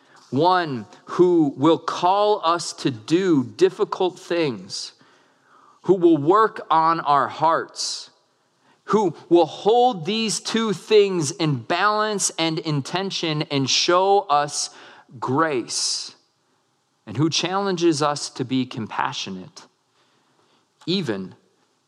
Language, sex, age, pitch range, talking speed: English, male, 40-59, 135-180 Hz, 100 wpm